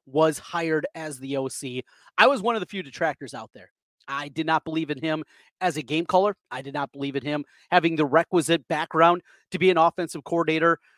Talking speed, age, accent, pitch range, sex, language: 215 wpm, 30-49, American, 150-185 Hz, male, English